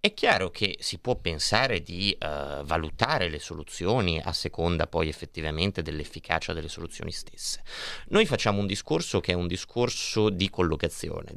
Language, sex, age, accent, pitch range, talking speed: Italian, male, 30-49, native, 80-105 Hz, 155 wpm